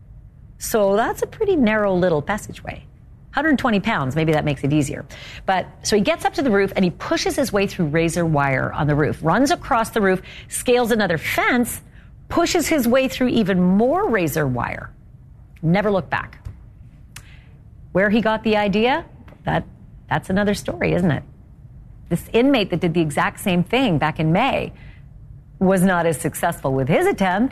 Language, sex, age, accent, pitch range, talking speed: English, female, 40-59, American, 145-215 Hz, 175 wpm